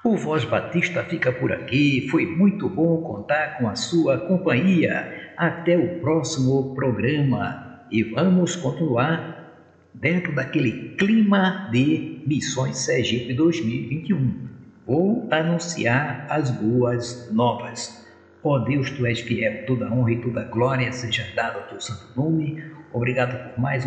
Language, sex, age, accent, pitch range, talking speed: Portuguese, male, 60-79, Brazilian, 125-165 Hz, 130 wpm